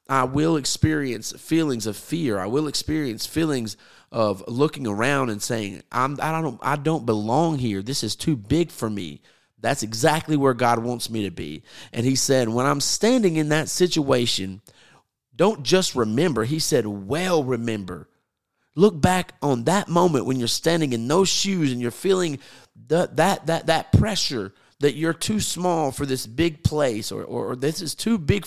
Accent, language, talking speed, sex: American, English, 180 wpm, male